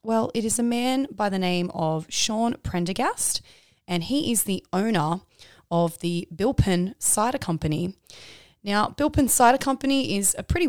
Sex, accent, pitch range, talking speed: female, Australian, 165-210 Hz, 155 wpm